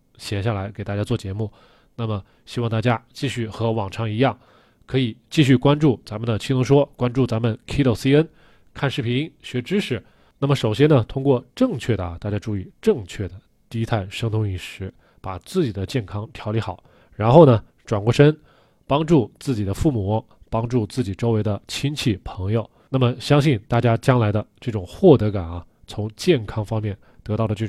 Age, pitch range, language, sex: 20-39, 100-130 Hz, Chinese, male